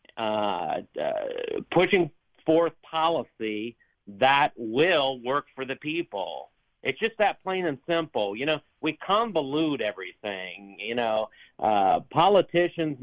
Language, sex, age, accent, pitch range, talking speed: English, male, 50-69, American, 120-170 Hz, 120 wpm